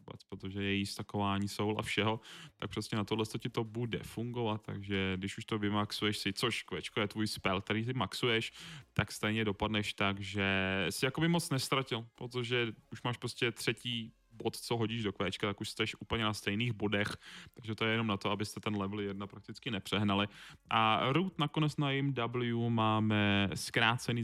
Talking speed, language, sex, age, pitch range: 185 wpm, Czech, male, 10-29, 100-125 Hz